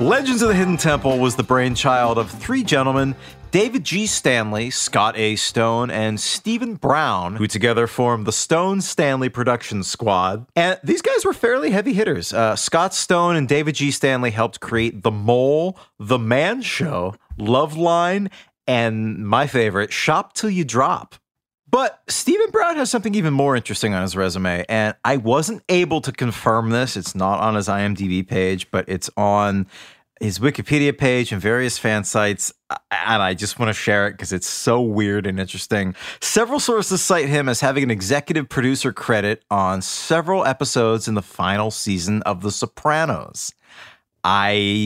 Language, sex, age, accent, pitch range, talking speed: English, male, 30-49, American, 105-150 Hz, 165 wpm